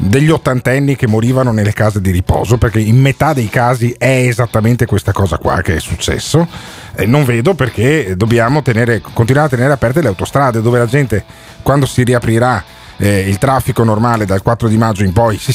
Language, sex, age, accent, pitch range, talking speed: Italian, male, 40-59, native, 100-135 Hz, 195 wpm